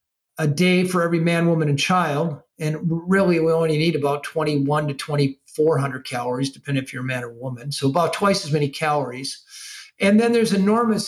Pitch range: 150-200 Hz